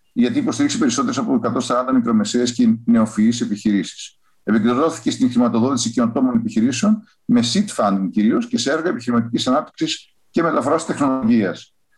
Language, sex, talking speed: Greek, male, 130 wpm